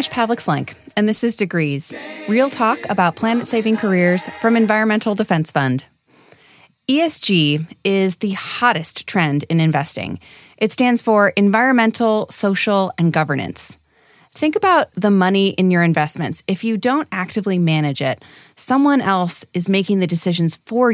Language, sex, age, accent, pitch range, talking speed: English, female, 30-49, American, 175-230 Hz, 140 wpm